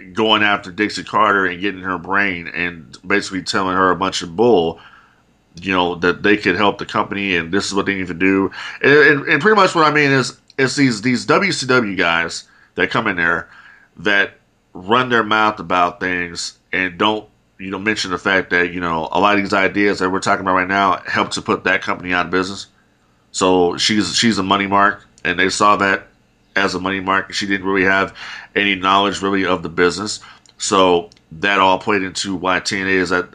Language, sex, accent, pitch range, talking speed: English, male, American, 90-105 Hz, 210 wpm